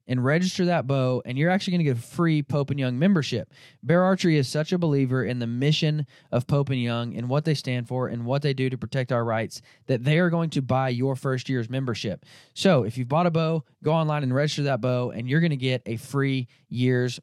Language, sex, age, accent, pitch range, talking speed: English, male, 20-39, American, 120-145 Hz, 250 wpm